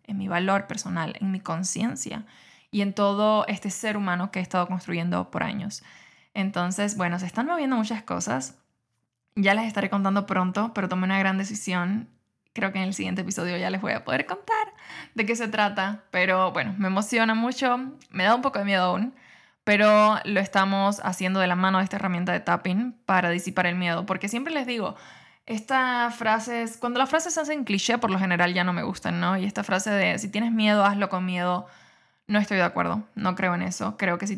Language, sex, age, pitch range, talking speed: Spanish, female, 20-39, 180-215 Hz, 215 wpm